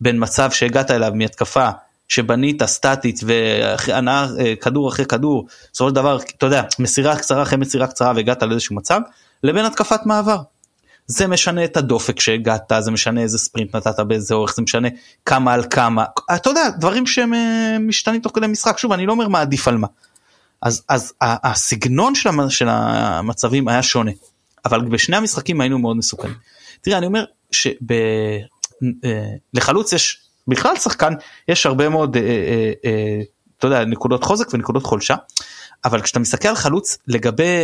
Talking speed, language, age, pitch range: 155 wpm, Hebrew, 30-49, 115-170 Hz